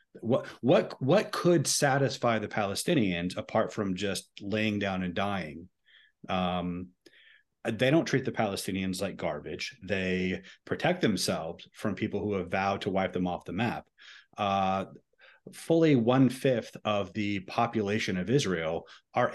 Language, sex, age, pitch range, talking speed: English, male, 30-49, 100-120 Hz, 140 wpm